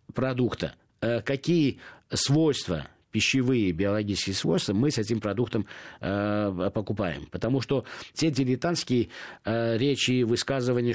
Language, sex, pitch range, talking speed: Russian, male, 110-145 Hz, 110 wpm